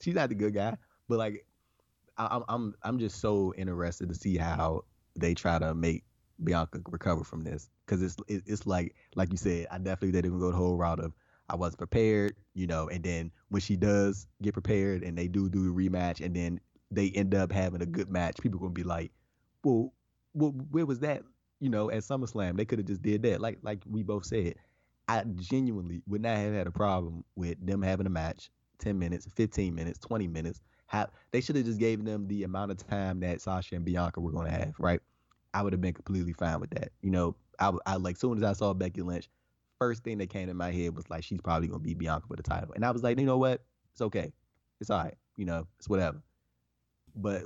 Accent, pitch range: American, 85-105 Hz